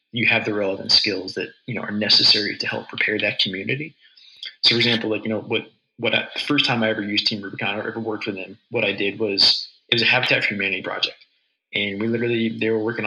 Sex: male